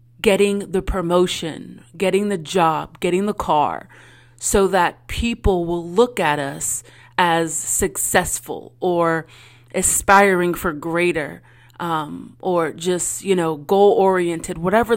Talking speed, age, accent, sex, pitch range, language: 120 wpm, 30-49, American, female, 155-200 Hz, English